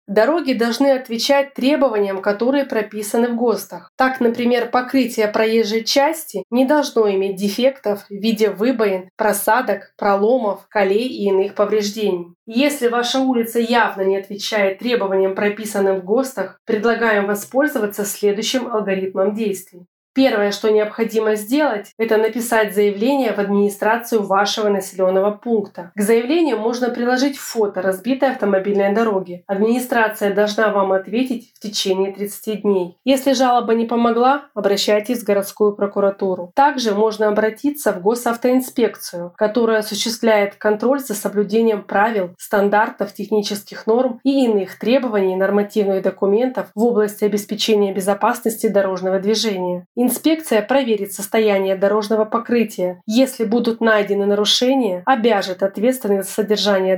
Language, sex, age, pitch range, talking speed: Russian, female, 20-39, 200-235 Hz, 120 wpm